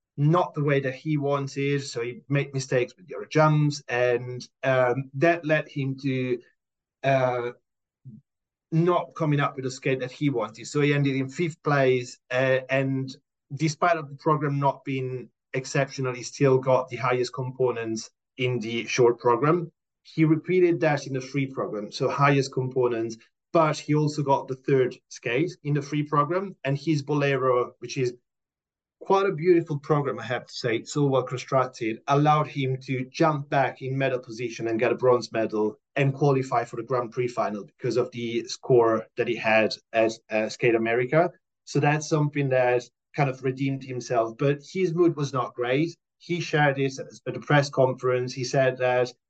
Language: English